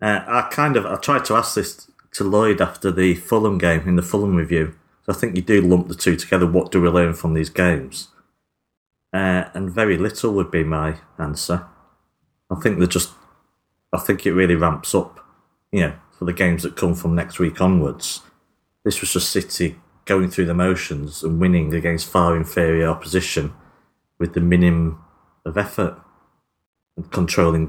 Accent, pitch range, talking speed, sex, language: British, 80-90 Hz, 185 wpm, male, English